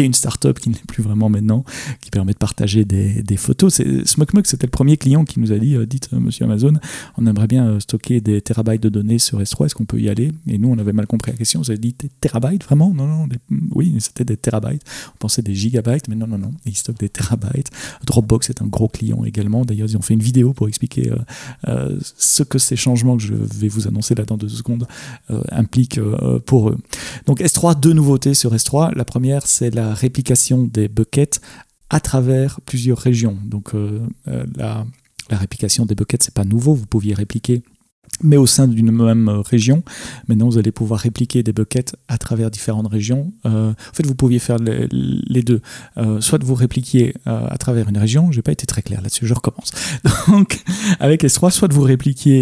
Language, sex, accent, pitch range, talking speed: French, male, French, 110-130 Hz, 220 wpm